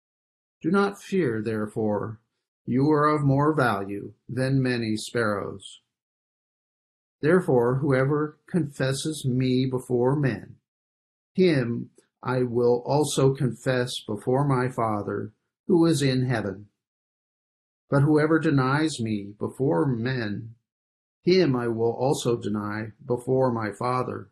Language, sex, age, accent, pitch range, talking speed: English, male, 50-69, American, 110-135 Hz, 110 wpm